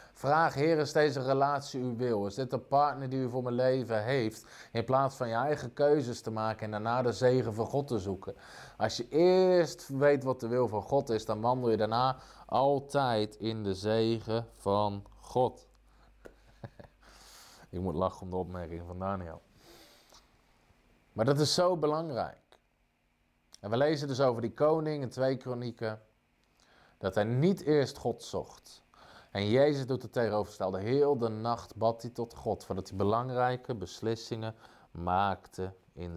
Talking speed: 165 wpm